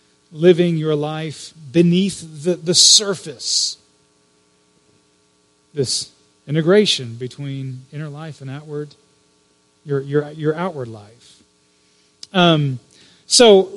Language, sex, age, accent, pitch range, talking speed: English, male, 40-59, American, 140-200 Hz, 90 wpm